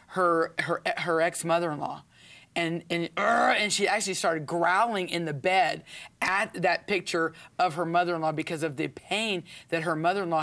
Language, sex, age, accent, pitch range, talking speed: English, female, 40-59, American, 160-185 Hz, 160 wpm